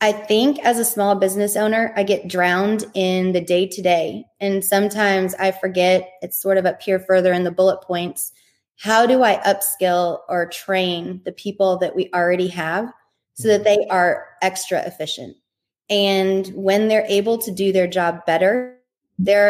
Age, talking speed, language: 20-39, 175 wpm, English